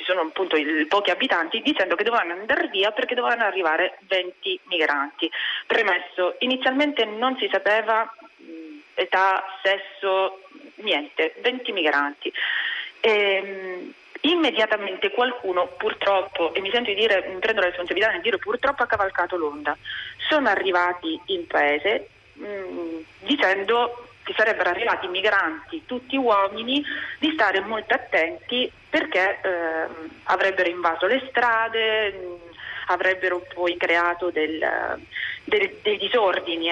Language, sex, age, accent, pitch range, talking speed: Italian, female, 30-49, native, 180-240 Hz, 120 wpm